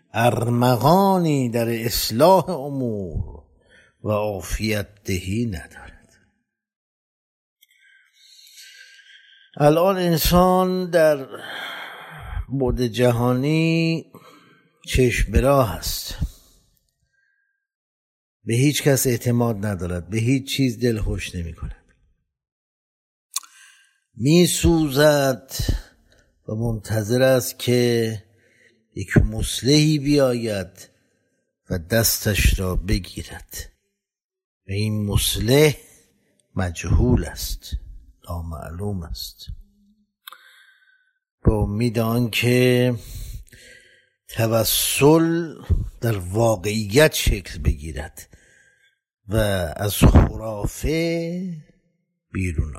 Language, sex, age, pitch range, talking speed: Persian, male, 60-79, 100-155 Hz, 65 wpm